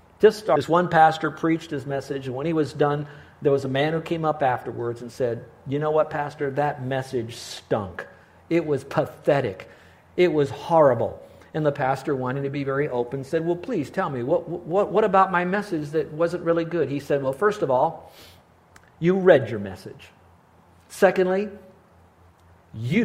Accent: American